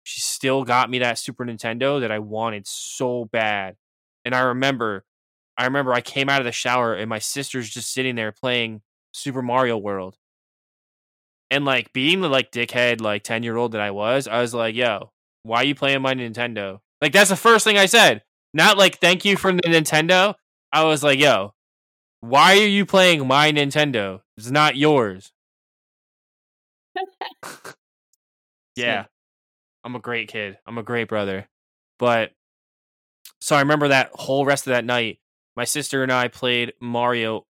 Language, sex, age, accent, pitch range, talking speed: English, male, 10-29, American, 115-135 Hz, 175 wpm